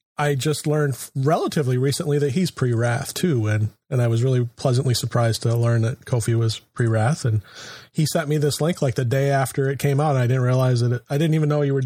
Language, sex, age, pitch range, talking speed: English, male, 30-49, 120-145 Hz, 235 wpm